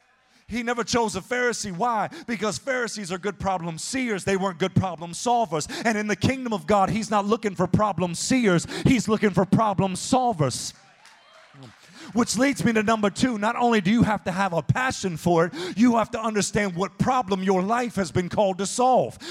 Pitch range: 195-245 Hz